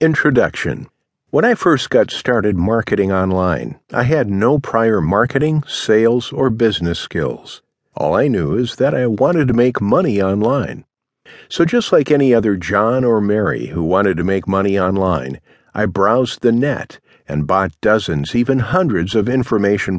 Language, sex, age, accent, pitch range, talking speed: English, male, 50-69, American, 95-130 Hz, 160 wpm